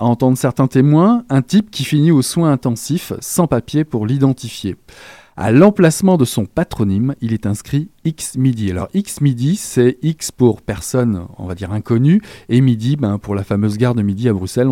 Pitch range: 110-150 Hz